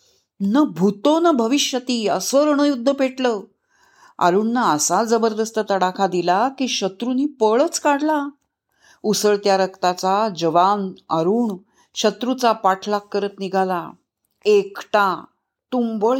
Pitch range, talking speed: 190-250 Hz, 95 wpm